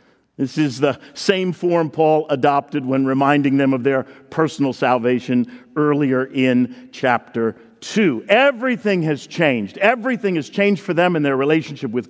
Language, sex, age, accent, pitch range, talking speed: English, male, 50-69, American, 145-205 Hz, 150 wpm